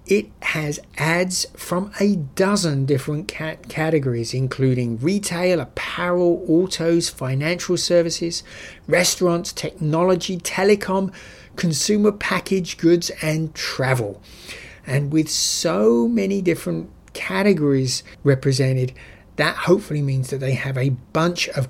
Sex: male